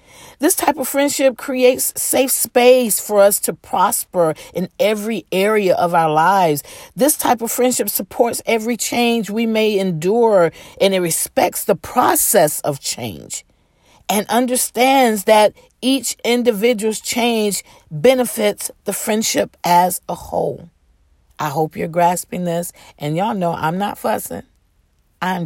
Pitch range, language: 170-245 Hz, English